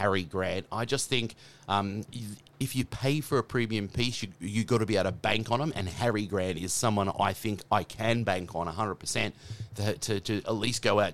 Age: 30-49